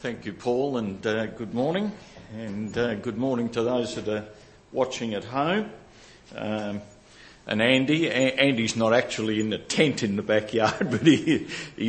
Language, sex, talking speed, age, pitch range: English, male, 170 wpm, 60-79, 105-125 Hz